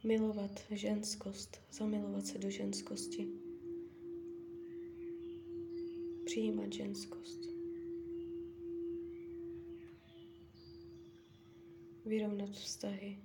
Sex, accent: female, native